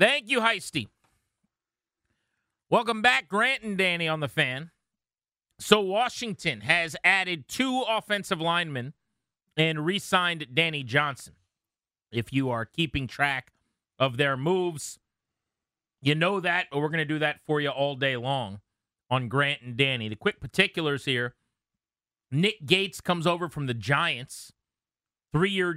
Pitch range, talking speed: 130-175 Hz, 140 wpm